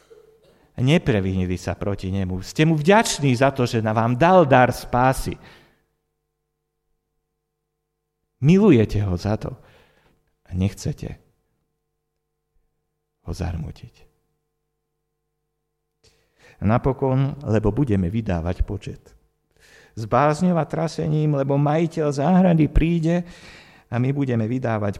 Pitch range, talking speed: 100-165 Hz, 95 wpm